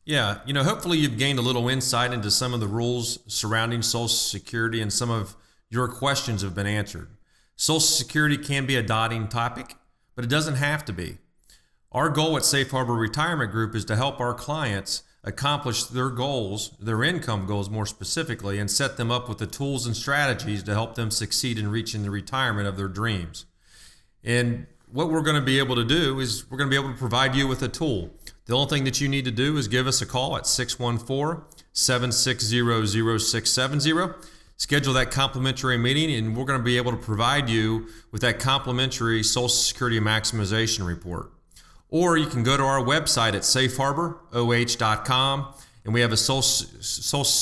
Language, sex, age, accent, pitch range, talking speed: English, male, 40-59, American, 115-135 Hz, 185 wpm